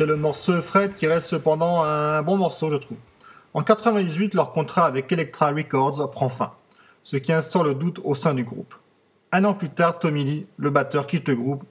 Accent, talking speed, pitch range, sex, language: French, 210 wpm, 135-170 Hz, male, French